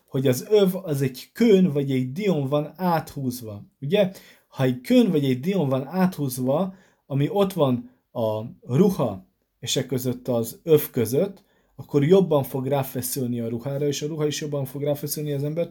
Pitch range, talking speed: 120-150 Hz, 175 wpm